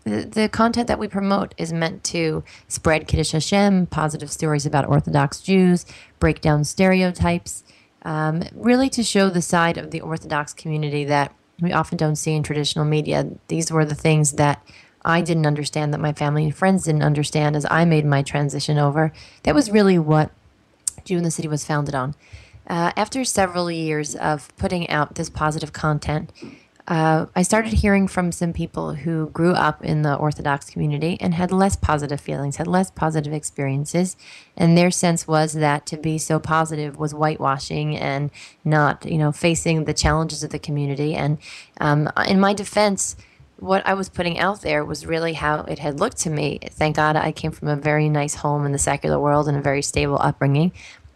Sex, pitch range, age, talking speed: female, 145-170 Hz, 30-49, 190 wpm